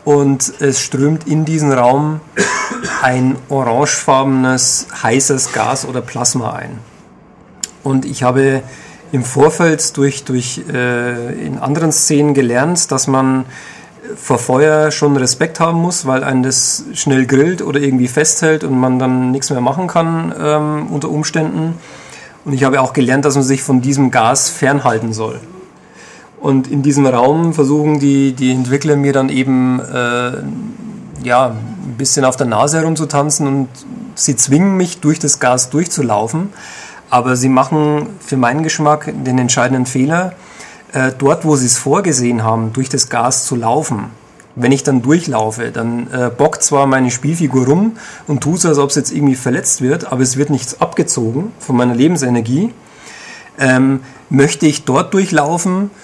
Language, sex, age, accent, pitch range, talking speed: German, male, 40-59, German, 130-155 Hz, 155 wpm